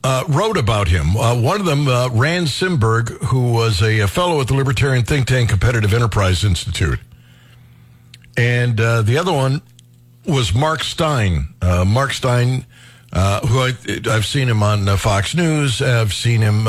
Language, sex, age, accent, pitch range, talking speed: English, male, 60-79, American, 110-145 Hz, 170 wpm